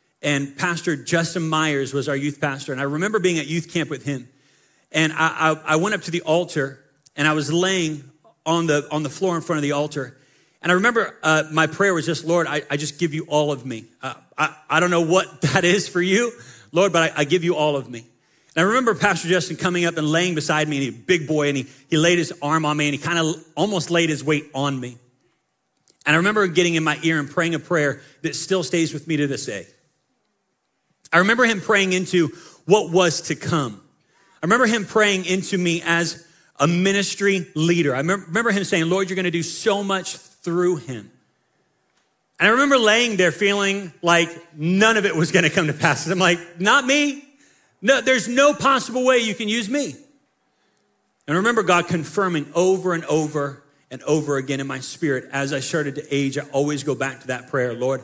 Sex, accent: male, American